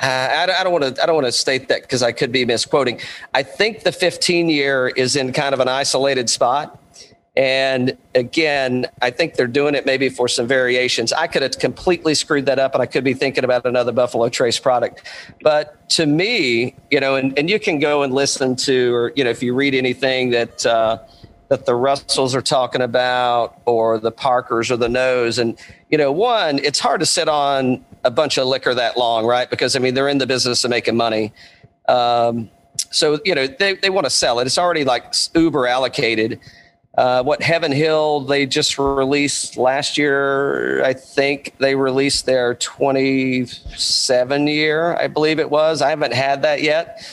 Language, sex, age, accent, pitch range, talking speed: English, male, 40-59, American, 125-145 Hz, 195 wpm